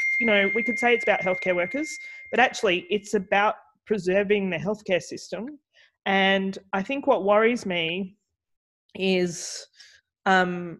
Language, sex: English, female